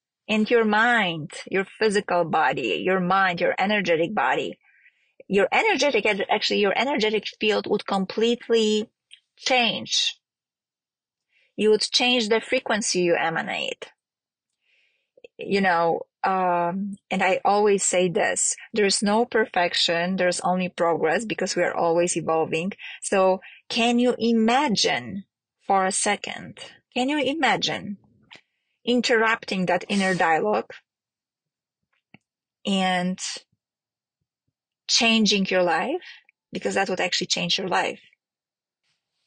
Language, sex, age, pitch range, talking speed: English, female, 20-39, 180-225 Hz, 110 wpm